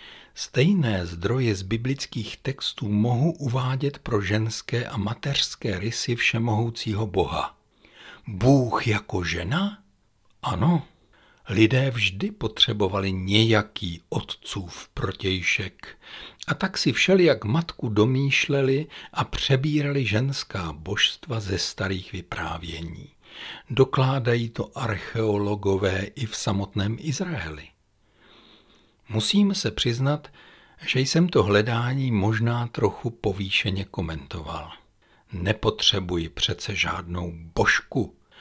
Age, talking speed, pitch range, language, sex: 60-79, 90 wpm, 95-135 Hz, Czech, male